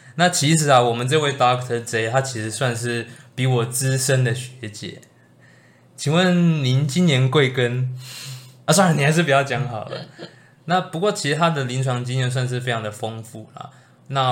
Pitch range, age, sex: 115-140 Hz, 20-39, male